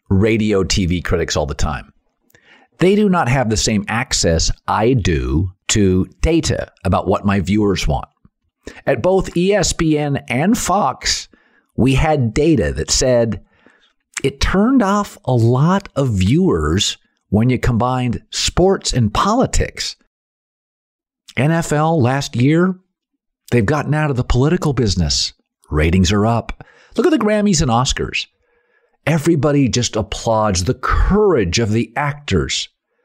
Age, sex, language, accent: 50-69, male, English, American